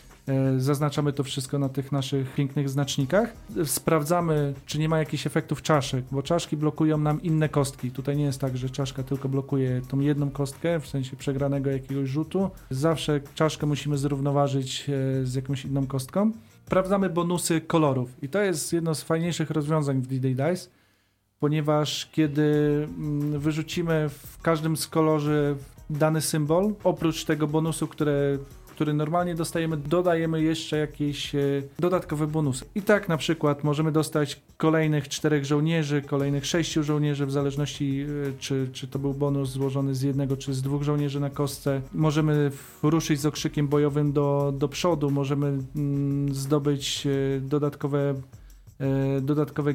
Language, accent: Polish, native